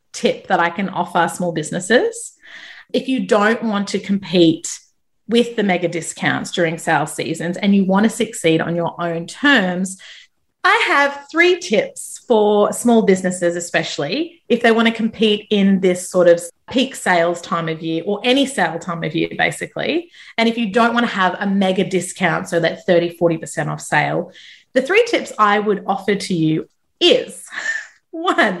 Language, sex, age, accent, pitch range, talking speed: English, female, 30-49, Australian, 180-240 Hz, 175 wpm